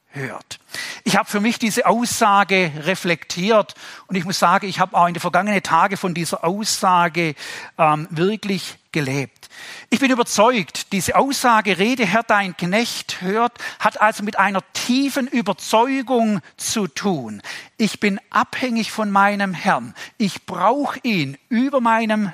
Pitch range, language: 170-220 Hz, German